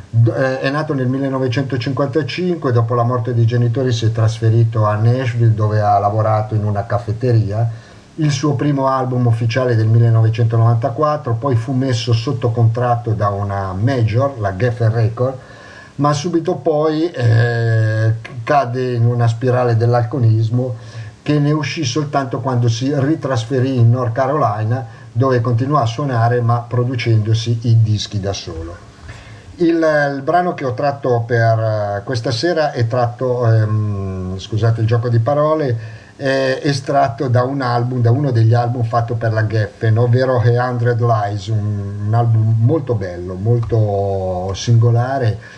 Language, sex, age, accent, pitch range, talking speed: Italian, male, 50-69, native, 110-130 Hz, 140 wpm